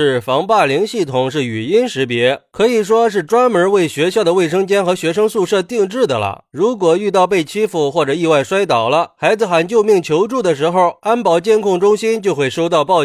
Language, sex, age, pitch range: Chinese, male, 30-49, 150-210 Hz